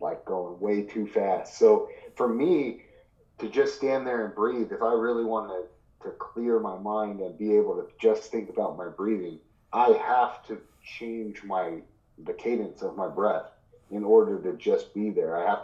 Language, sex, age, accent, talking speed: English, male, 30-49, American, 190 wpm